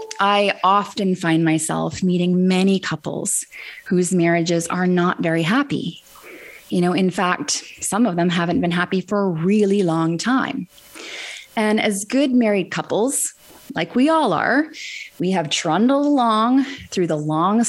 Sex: female